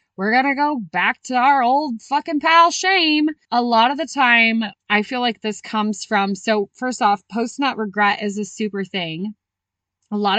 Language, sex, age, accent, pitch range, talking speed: English, female, 20-39, American, 190-245 Hz, 190 wpm